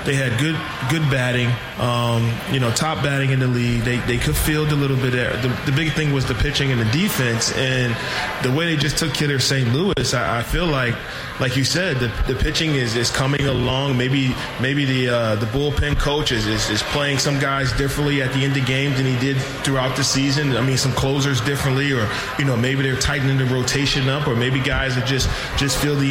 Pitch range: 125-145 Hz